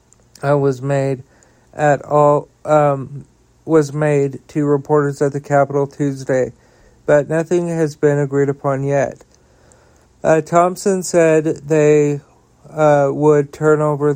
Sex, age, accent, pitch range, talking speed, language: male, 50-69, American, 140-150 Hz, 120 wpm, English